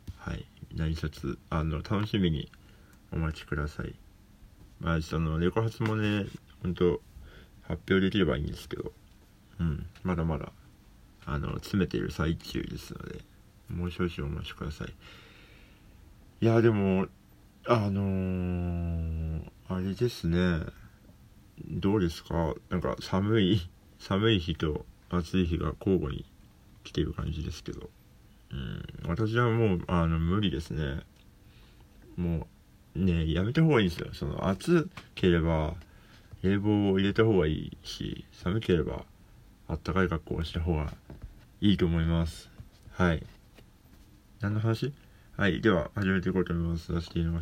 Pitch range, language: 85-100 Hz, Japanese